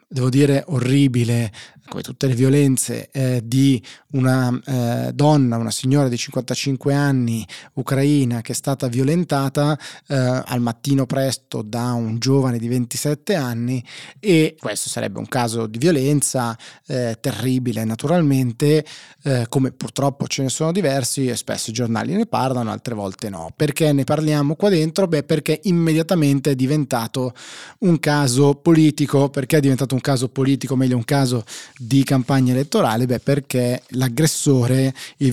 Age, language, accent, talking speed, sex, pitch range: 20-39, Italian, native, 150 wpm, male, 125-145 Hz